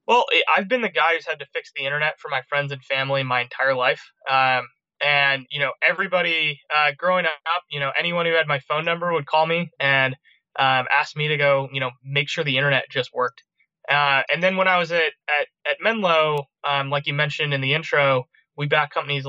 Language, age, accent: English, 20-39, American